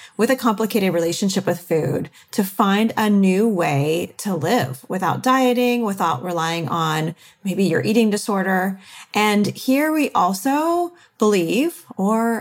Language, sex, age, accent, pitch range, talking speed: English, female, 30-49, American, 180-245 Hz, 135 wpm